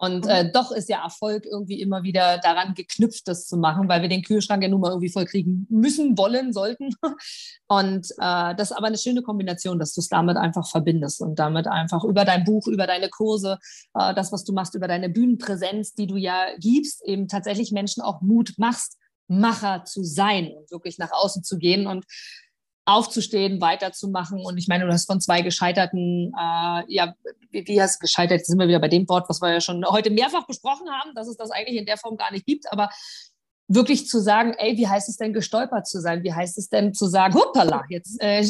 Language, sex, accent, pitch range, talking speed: German, female, German, 185-230 Hz, 215 wpm